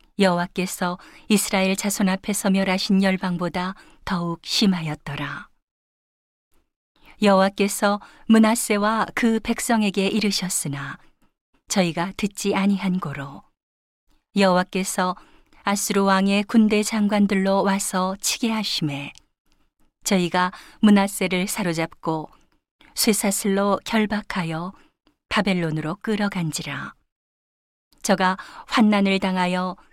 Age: 40-59